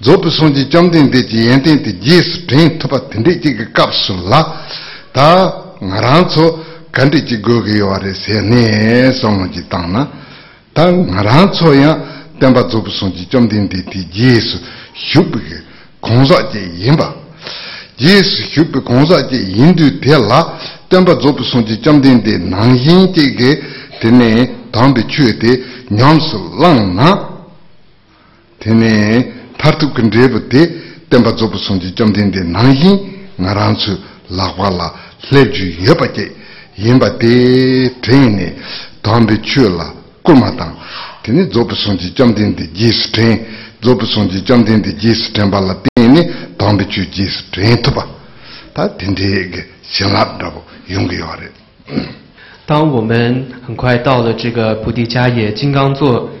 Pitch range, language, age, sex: 105-145 Hz, English, 60-79, male